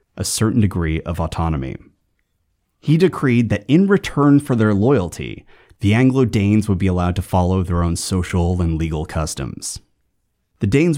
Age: 30-49